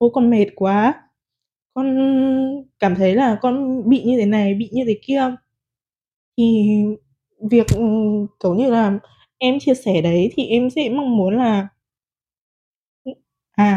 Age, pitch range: 20-39, 205-270 Hz